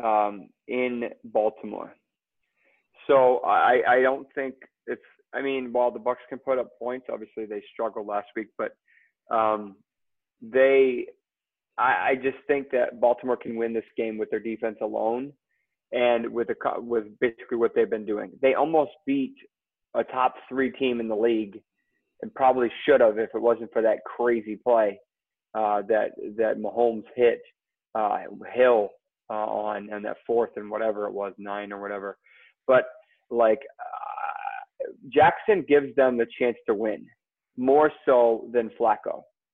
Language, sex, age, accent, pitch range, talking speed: English, male, 30-49, American, 110-135 Hz, 155 wpm